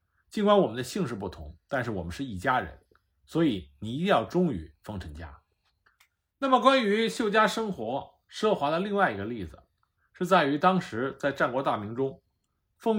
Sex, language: male, Chinese